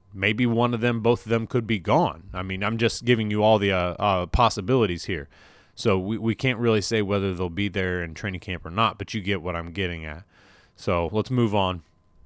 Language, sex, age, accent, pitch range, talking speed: English, male, 30-49, American, 90-110 Hz, 235 wpm